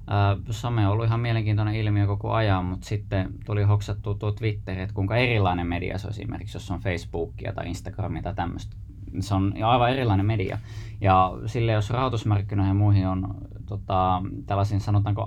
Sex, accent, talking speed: male, native, 170 wpm